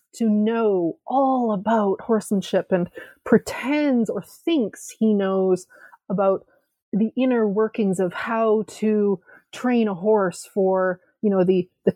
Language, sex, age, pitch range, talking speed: English, female, 30-49, 185-225 Hz, 130 wpm